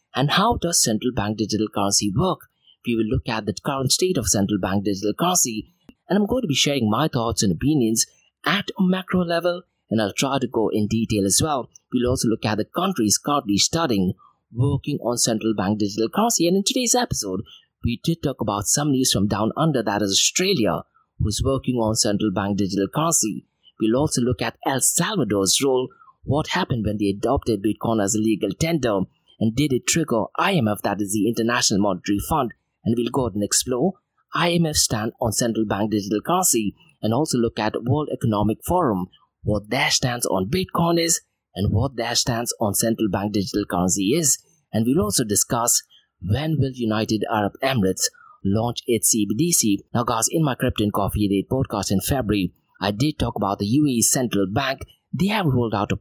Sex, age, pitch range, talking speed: male, 30-49, 105-145 Hz, 190 wpm